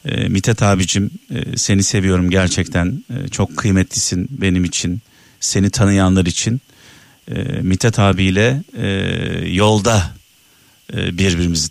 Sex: male